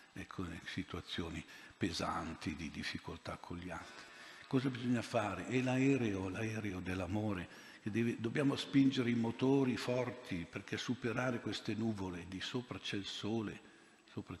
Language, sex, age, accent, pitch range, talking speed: Italian, male, 60-79, native, 90-110 Hz, 135 wpm